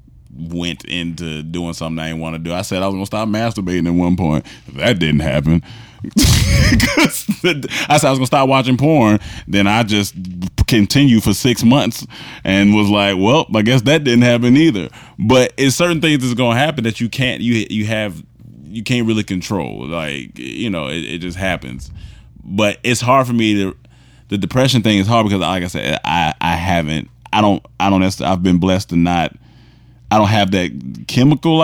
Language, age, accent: English, 20-39, American